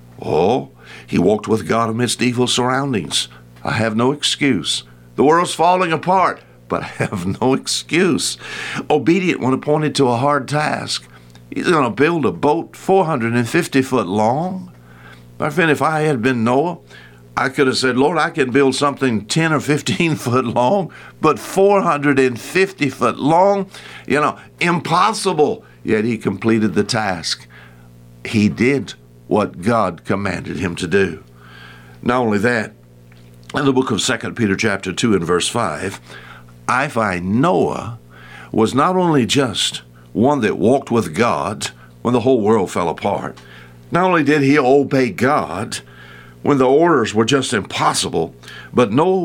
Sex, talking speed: male, 150 wpm